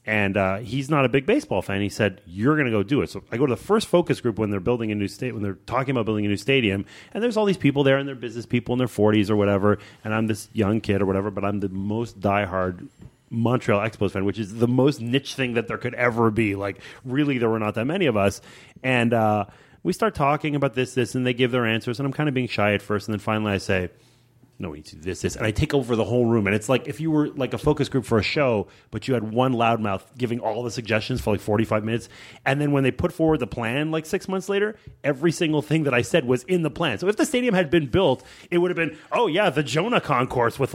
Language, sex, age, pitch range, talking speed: English, male, 30-49, 105-145 Hz, 285 wpm